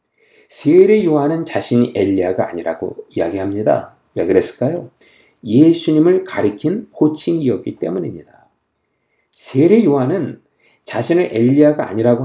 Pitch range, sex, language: 120-170 Hz, male, Korean